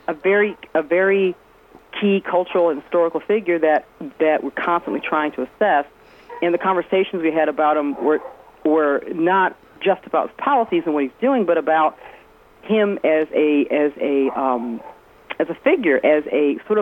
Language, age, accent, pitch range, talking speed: English, 40-59, American, 145-195 Hz, 170 wpm